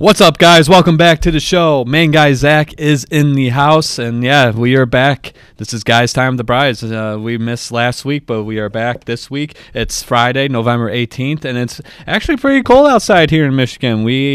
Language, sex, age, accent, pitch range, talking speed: English, male, 20-39, American, 110-140 Hz, 215 wpm